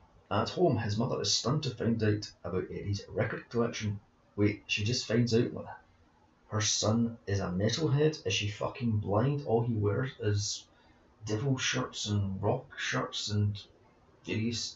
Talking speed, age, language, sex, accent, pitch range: 160 wpm, 30-49, English, male, British, 105-130 Hz